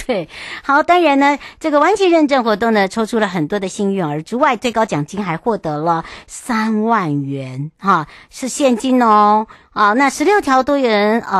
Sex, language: male, Chinese